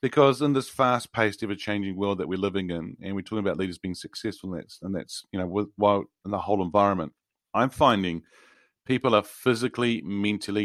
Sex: male